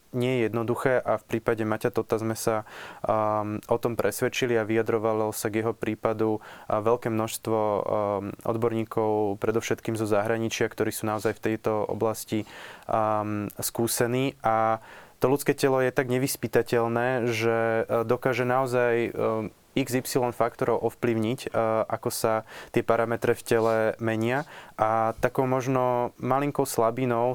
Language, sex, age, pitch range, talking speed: Slovak, male, 20-39, 110-120 Hz, 135 wpm